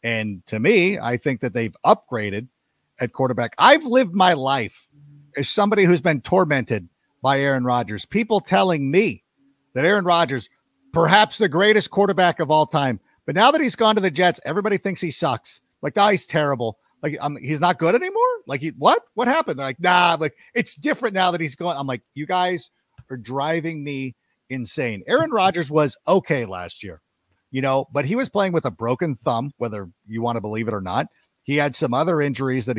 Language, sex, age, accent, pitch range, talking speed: English, male, 50-69, American, 125-185 Hz, 195 wpm